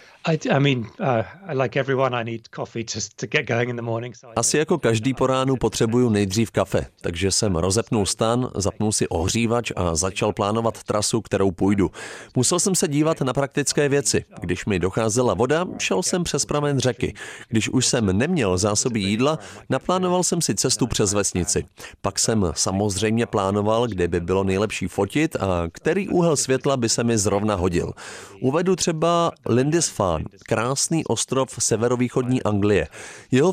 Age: 40-59